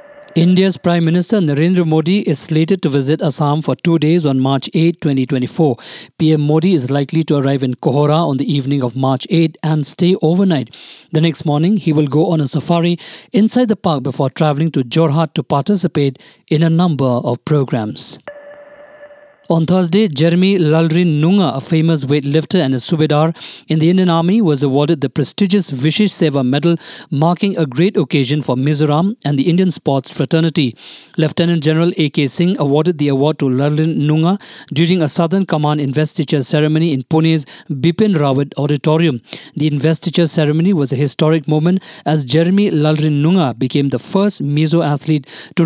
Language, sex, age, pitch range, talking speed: English, male, 50-69, 145-175 Hz, 165 wpm